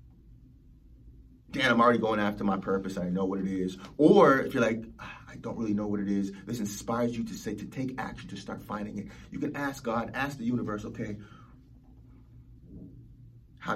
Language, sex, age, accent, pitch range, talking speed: English, male, 30-49, American, 115-155 Hz, 190 wpm